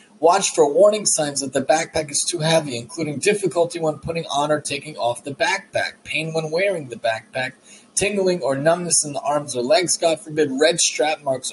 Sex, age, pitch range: male, 30-49, 125-160 Hz